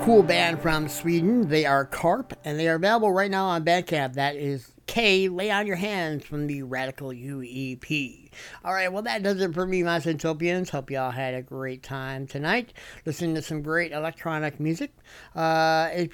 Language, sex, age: English, male, 50-69